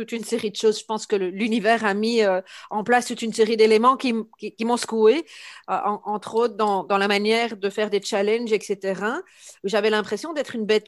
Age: 40-59